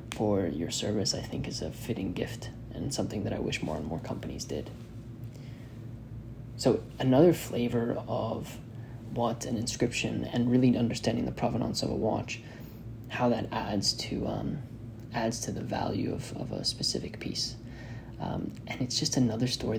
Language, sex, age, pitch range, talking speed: English, male, 20-39, 110-120 Hz, 165 wpm